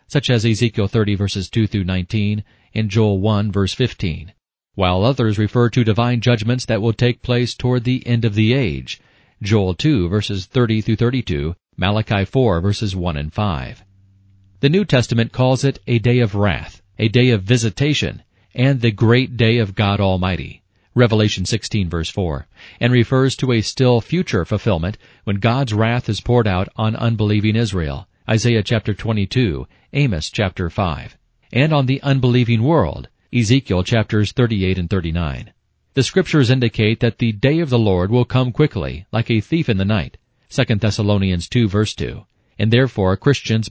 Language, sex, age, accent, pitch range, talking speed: English, male, 40-59, American, 100-125 Hz, 160 wpm